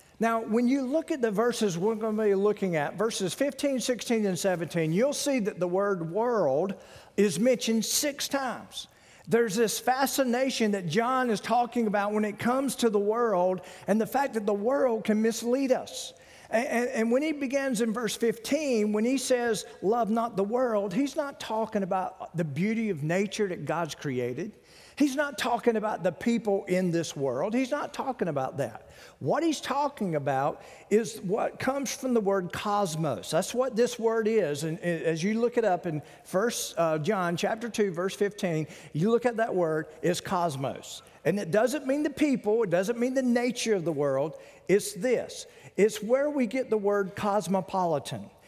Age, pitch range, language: 50-69, 185-245 Hz, English